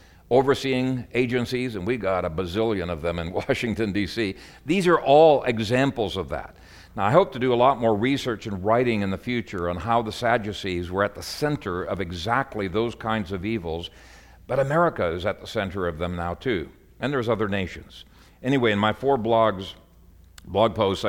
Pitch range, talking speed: 90-120 Hz, 190 wpm